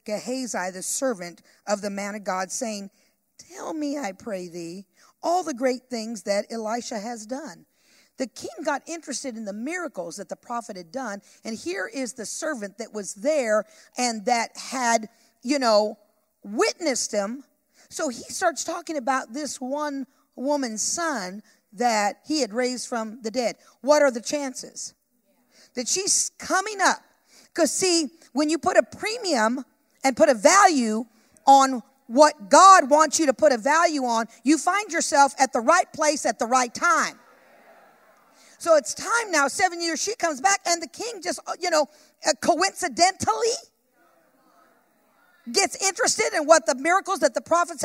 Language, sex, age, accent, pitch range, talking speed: English, female, 50-69, American, 225-320 Hz, 165 wpm